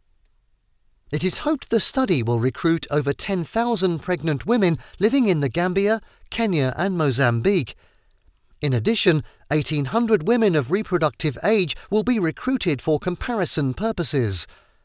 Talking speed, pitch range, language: 125 wpm, 130-200 Hz, English